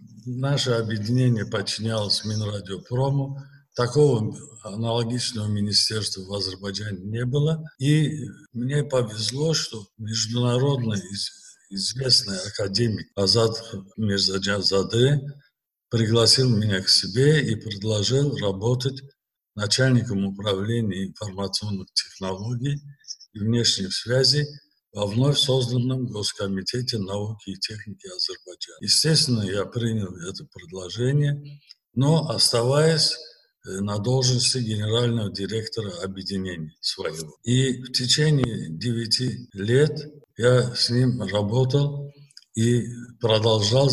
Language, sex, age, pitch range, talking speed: Russian, male, 50-69, 105-130 Hz, 90 wpm